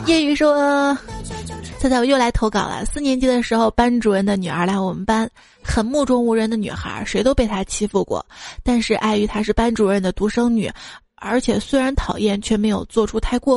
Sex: female